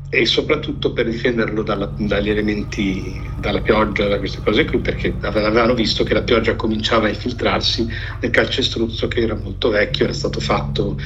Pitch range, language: 110-125 Hz, Italian